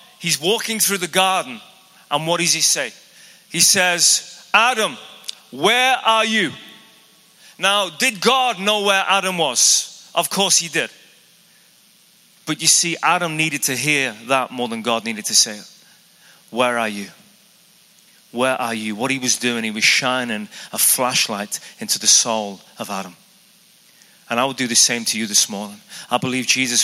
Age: 30-49